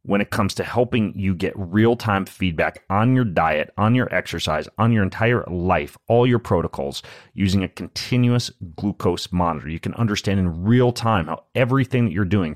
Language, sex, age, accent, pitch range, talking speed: English, male, 30-49, American, 85-115 Hz, 180 wpm